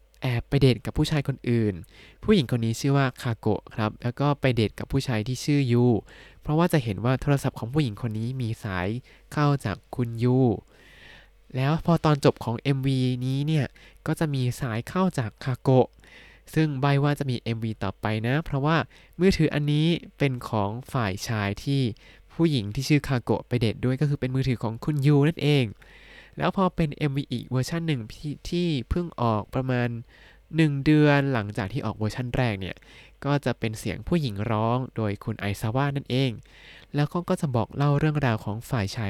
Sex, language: male, Thai